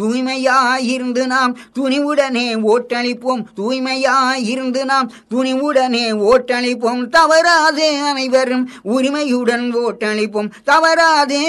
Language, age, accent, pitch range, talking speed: Tamil, 20-39, native, 225-280 Hz, 70 wpm